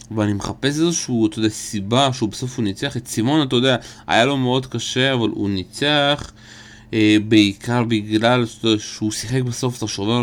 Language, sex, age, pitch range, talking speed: Hebrew, male, 30-49, 105-120 Hz, 155 wpm